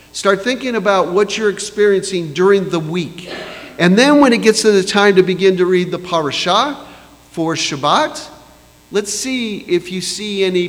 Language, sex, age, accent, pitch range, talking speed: English, male, 50-69, American, 140-205 Hz, 175 wpm